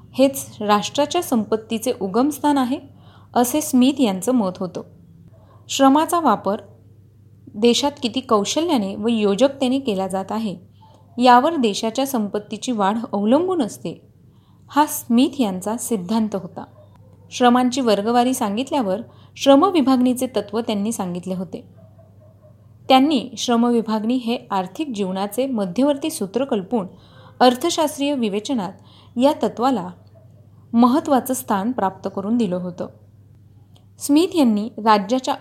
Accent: native